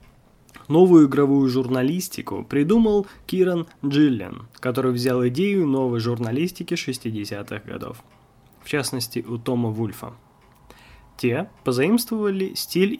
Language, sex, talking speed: Russian, male, 95 wpm